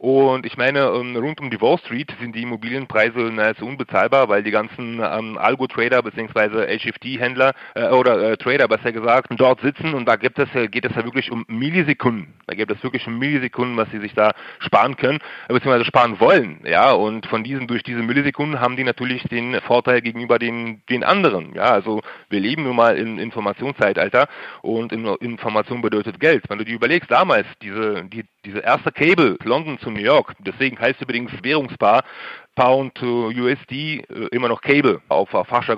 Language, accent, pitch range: German, German, 110-130 Hz